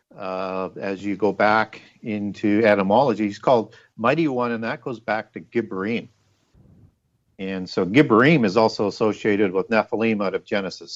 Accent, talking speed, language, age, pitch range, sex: American, 155 wpm, English, 50-69, 100-115 Hz, male